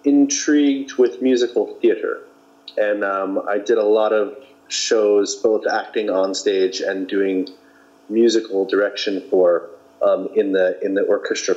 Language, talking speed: English, 140 wpm